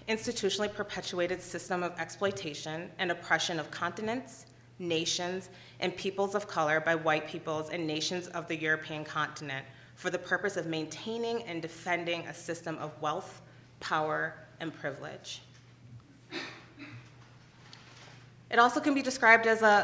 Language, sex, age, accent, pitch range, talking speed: English, female, 30-49, American, 155-185 Hz, 135 wpm